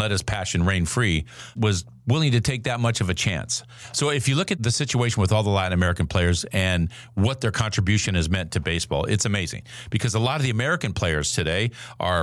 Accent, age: American, 50-69